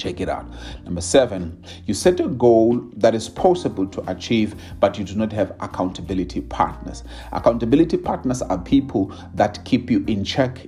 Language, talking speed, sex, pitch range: English, 165 wpm, male, 95-120 Hz